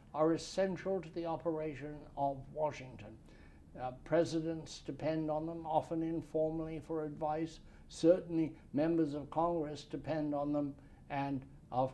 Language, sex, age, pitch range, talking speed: English, male, 60-79, 125-165 Hz, 125 wpm